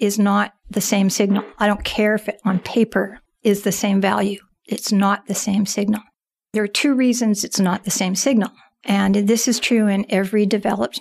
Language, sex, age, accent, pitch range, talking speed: English, female, 50-69, American, 195-220 Hz, 200 wpm